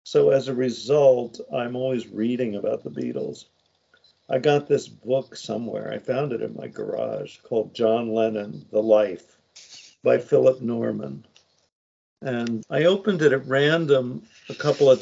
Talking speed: 150 wpm